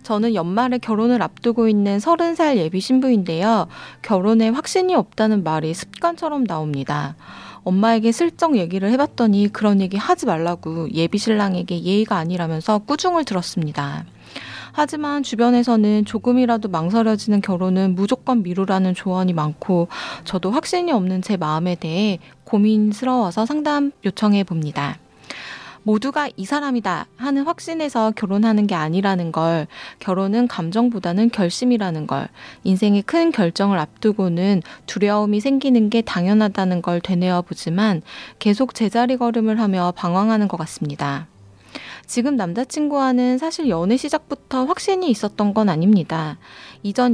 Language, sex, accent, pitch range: Korean, female, native, 180-240 Hz